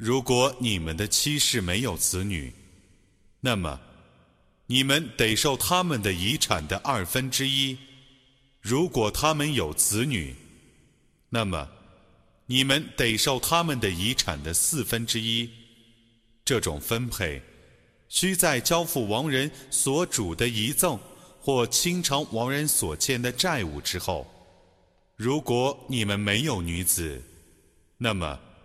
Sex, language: male, Arabic